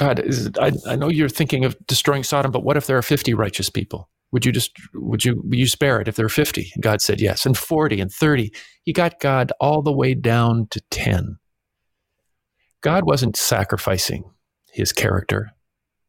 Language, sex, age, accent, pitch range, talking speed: English, male, 50-69, American, 100-130 Hz, 200 wpm